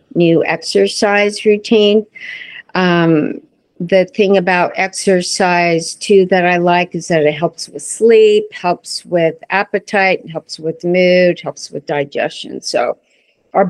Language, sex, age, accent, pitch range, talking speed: English, female, 50-69, American, 165-205 Hz, 125 wpm